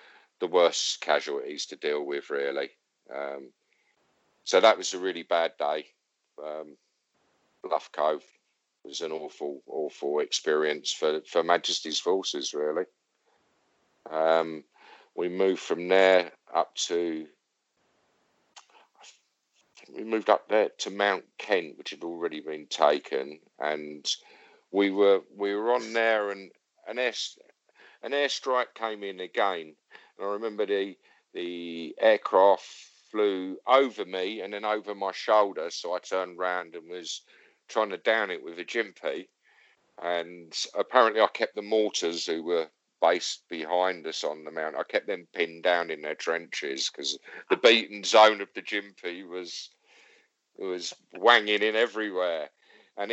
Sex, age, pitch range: male, 50-69, 85-110 Hz